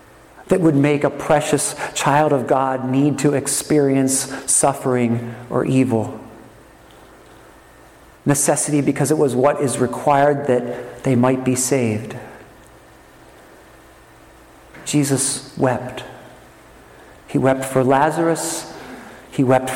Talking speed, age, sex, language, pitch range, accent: 105 wpm, 50-69, male, English, 130-180 Hz, American